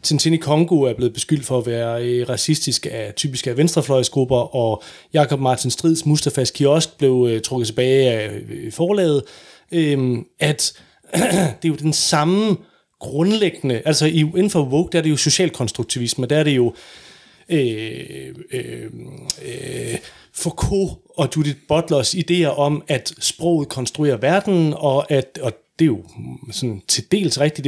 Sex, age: male, 30-49